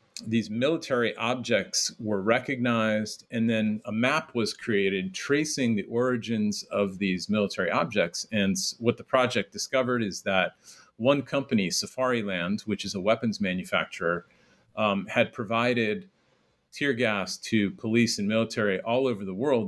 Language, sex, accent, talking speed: English, male, American, 140 wpm